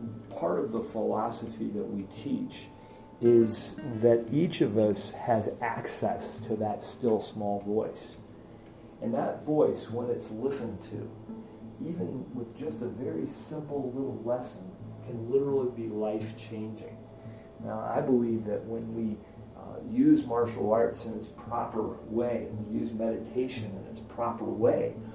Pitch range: 105-120 Hz